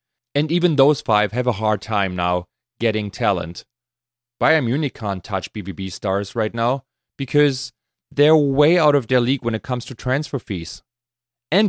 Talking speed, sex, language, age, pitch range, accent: 170 wpm, male, English, 30-49, 110-140 Hz, German